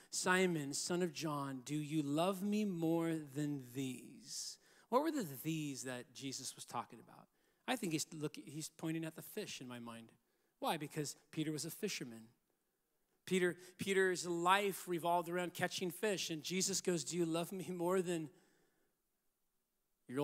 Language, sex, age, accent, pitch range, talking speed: English, male, 40-59, American, 155-210 Hz, 165 wpm